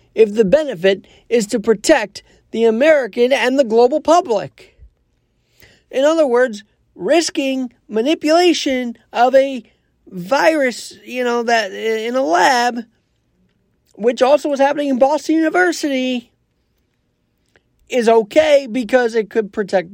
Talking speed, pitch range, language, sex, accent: 115 wpm, 215-295 Hz, English, male, American